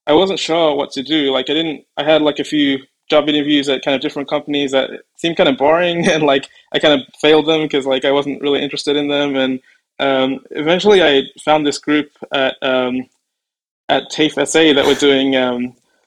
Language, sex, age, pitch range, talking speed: English, male, 20-39, 130-150 Hz, 215 wpm